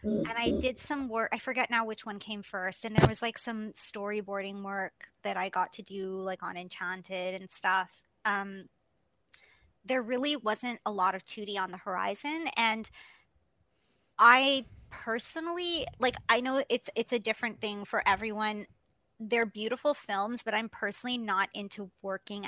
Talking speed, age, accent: 165 wpm, 20-39, American